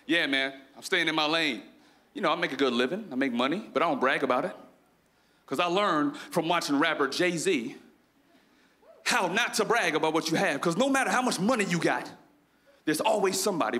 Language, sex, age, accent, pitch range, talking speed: English, male, 40-59, American, 175-255 Hz, 215 wpm